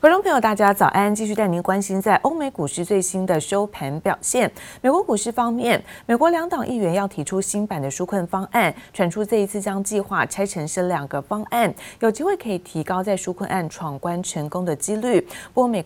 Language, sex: Chinese, female